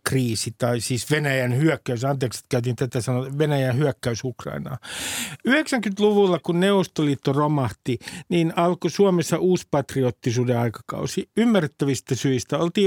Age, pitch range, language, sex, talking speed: 50-69, 140-185 Hz, Finnish, male, 120 wpm